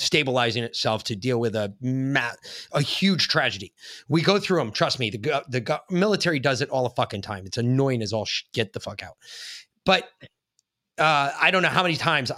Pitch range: 115-160 Hz